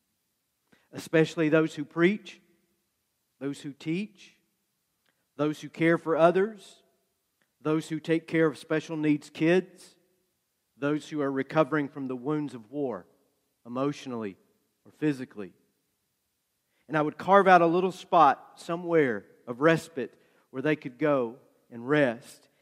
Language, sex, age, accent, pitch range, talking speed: English, male, 40-59, American, 135-165 Hz, 130 wpm